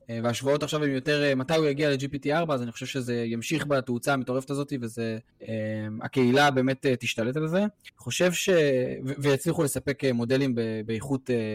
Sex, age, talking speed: male, 20-39, 155 wpm